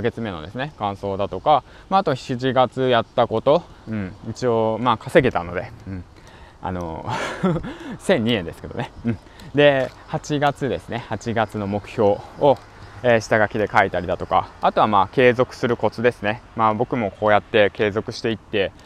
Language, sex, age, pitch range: Japanese, male, 20-39, 100-130 Hz